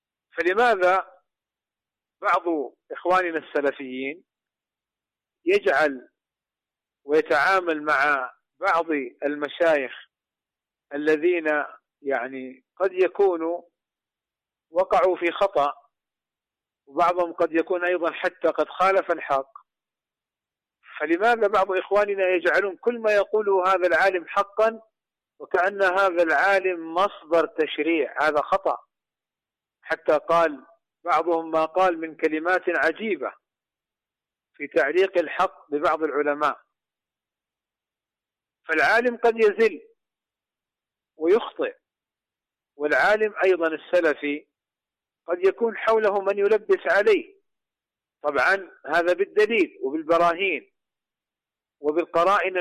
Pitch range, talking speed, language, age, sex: 160-205 Hz, 80 wpm, Arabic, 50-69, male